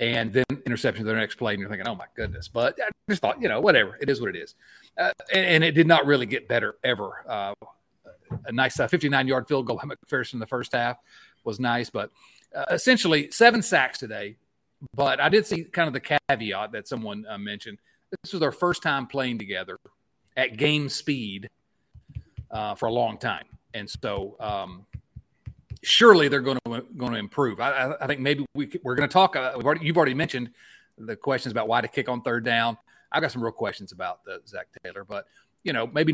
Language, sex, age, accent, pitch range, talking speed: English, male, 40-59, American, 120-160 Hz, 215 wpm